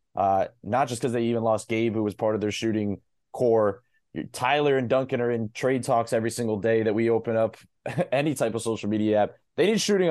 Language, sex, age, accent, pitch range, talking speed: English, male, 20-39, American, 110-130 Hz, 225 wpm